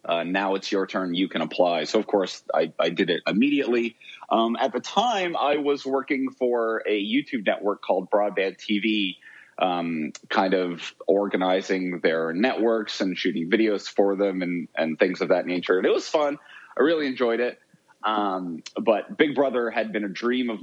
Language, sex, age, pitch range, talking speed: English, male, 30-49, 100-125 Hz, 185 wpm